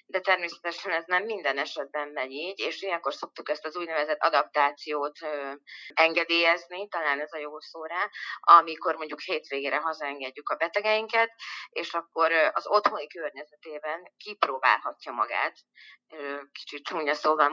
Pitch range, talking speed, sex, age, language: 150-190 Hz, 125 wpm, female, 30-49, Hungarian